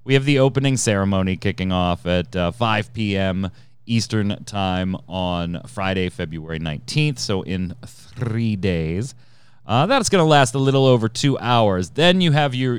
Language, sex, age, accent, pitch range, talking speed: English, male, 30-49, American, 95-125 Hz, 165 wpm